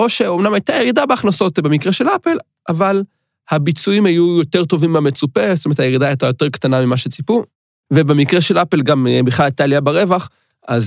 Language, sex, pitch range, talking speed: Hebrew, male, 125-170 Hz, 170 wpm